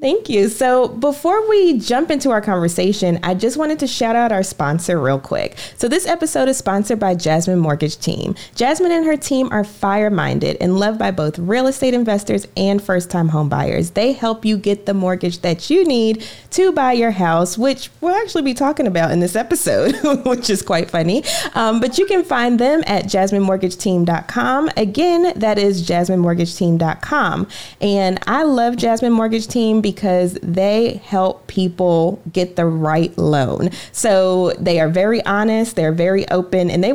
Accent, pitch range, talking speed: American, 180-265 Hz, 180 wpm